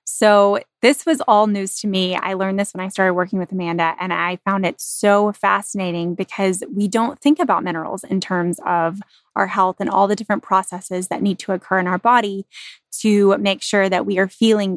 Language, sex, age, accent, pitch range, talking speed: English, female, 20-39, American, 180-220 Hz, 210 wpm